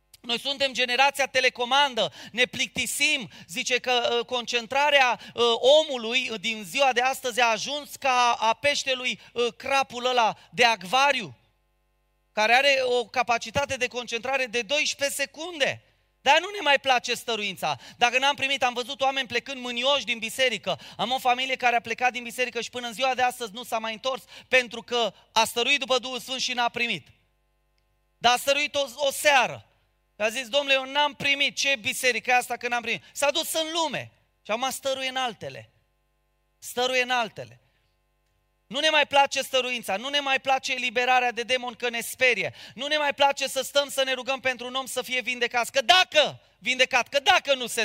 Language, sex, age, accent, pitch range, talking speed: Romanian, male, 30-49, native, 235-275 Hz, 180 wpm